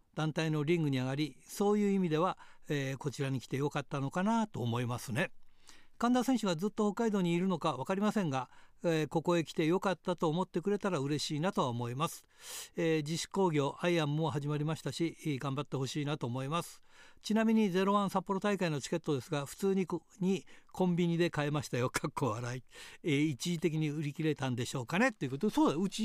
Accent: native